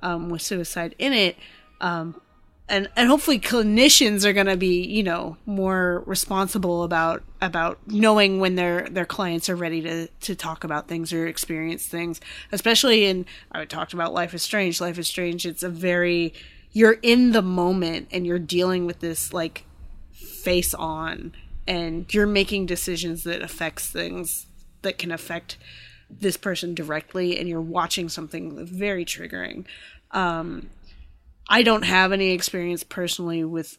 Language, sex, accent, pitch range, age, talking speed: English, female, American, 170-200 Hz, 20-39, 155 wpm